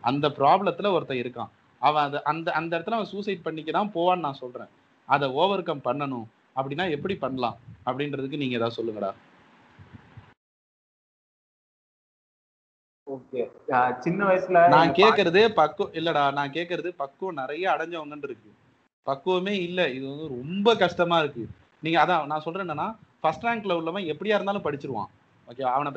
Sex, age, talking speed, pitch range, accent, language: male, 30-49, 115 wpm, 130-180 Hz, native, Tamil